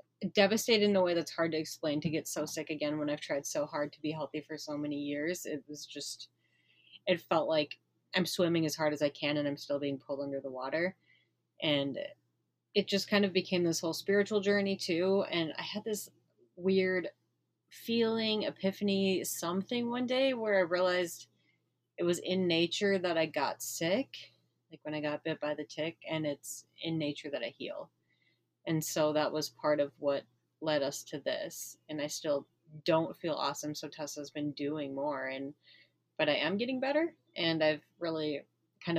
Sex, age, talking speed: female, 30-49, 195 wpm